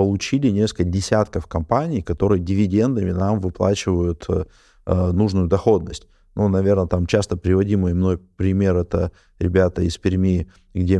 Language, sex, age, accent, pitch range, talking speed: Russian, male, 20-39, native, 95-110 Hz, 125 wpm